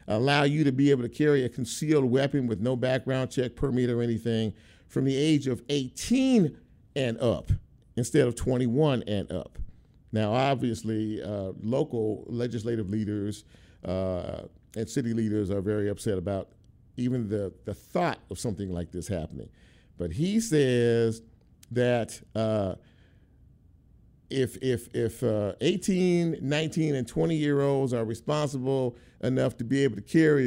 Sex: male